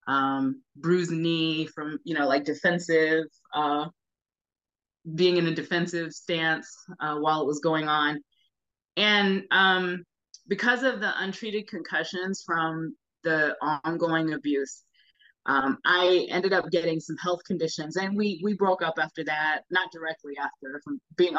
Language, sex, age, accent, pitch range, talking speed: English, female, 20-39, American, 155-185 Hz, 145 wpm